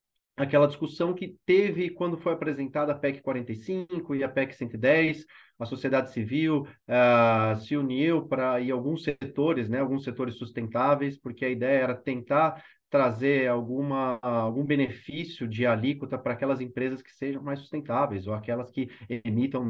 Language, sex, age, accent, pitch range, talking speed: Portuguese, male, 30-49, Brazilian, 120-165 Hz, 150 wpm